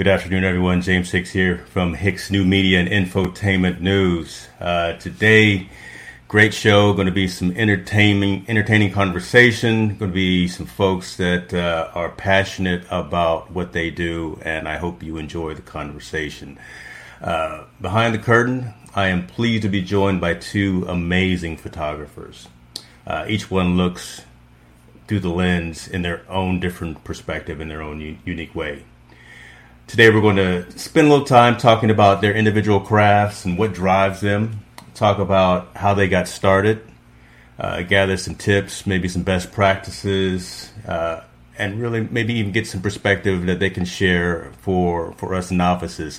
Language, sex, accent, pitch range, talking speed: English, male, American, 85-100 Hz, 160 wpm